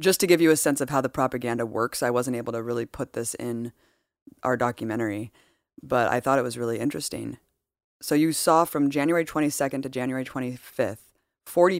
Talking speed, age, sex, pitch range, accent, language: 195 wpm, 20-39, female, 125-155 Hz, American, English